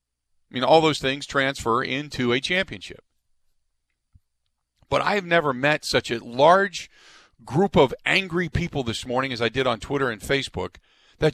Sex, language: male, English